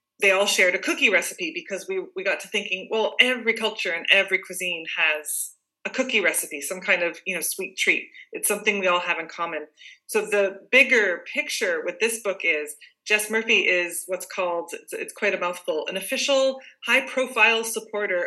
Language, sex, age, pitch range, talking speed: English, female, 20-39, 180-230 Hz, 195 wpm